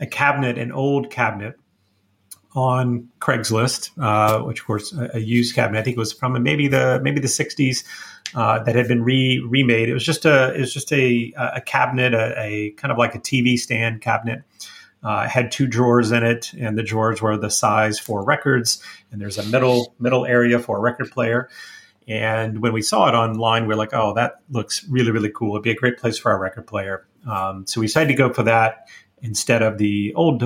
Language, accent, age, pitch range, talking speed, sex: English, American, 30-49, 110-130 Hz, 220 wpm, male